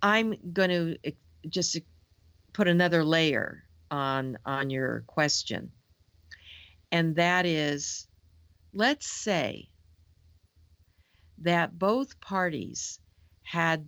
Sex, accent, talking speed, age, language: female, American, 80 wpm, 50-69, English